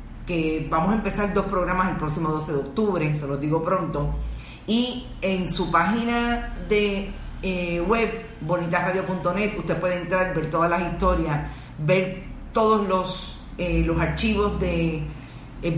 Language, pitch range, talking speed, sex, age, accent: Spanish, 160-195 Hz, 145 wpm, female, 40-59, American